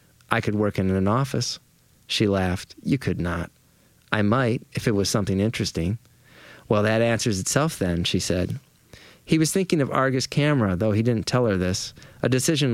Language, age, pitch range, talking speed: English, 30-49, 100-130 Hz, 185 wpm